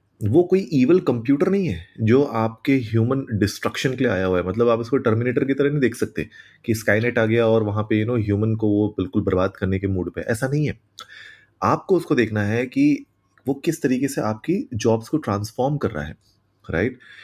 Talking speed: 215 wpm